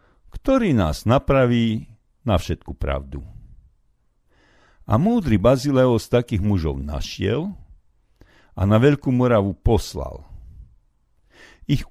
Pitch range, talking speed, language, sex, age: 90-125 Hz, 95 wpm, Slovak, male, 50-69